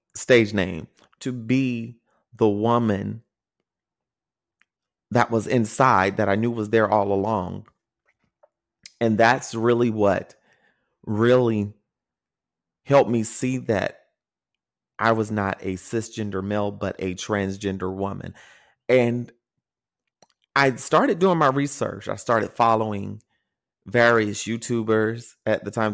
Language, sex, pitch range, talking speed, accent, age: English, male, 100-115 Hz, 115 wpm, American, 30-49